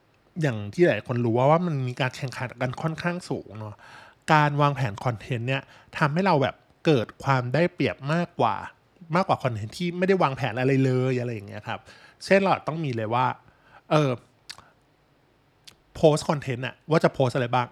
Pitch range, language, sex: 120-155 Hz, Thai, male